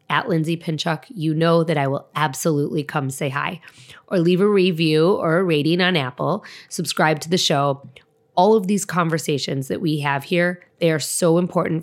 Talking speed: 190 wpm